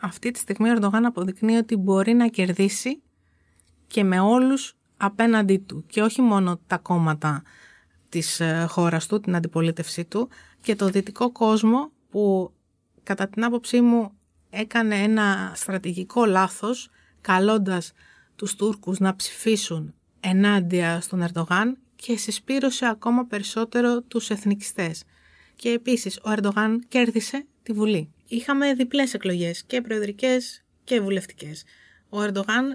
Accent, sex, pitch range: native, female, 185-235 Hz